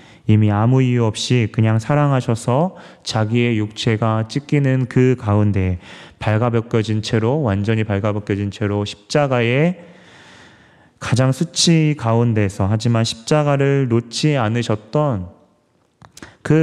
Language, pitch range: Korean, 105-130 Hz